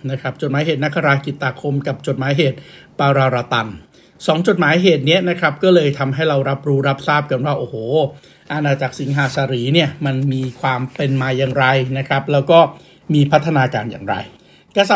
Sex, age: male, 60-79